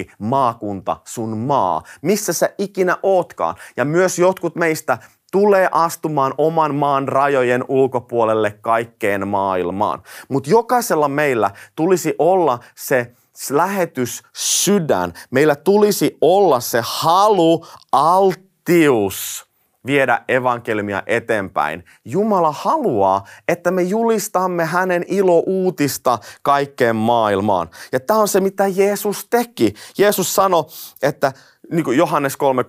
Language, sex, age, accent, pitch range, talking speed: Finnish, male, 30-49, native, 110-175 Hz, 105 wpm